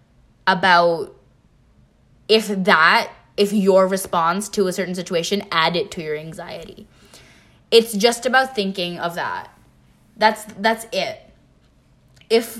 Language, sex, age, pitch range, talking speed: English, female, 10-29, 185-235 Hz, 120 wpm